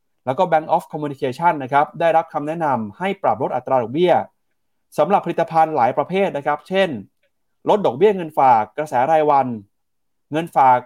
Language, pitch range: Thai, 130-175 Hz